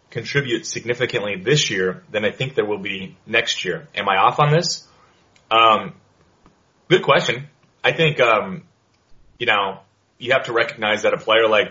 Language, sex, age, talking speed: English, male, 30-49, 170 wpm